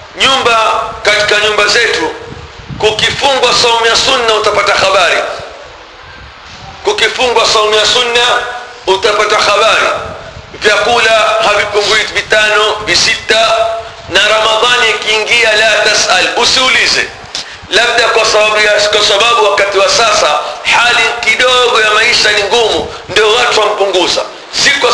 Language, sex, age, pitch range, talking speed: Swahili, male, 50-69, 215-245 Hz, 105 wpm